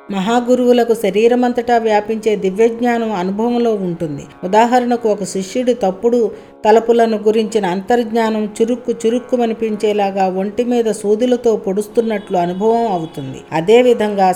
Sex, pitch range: female, 190-235 Hz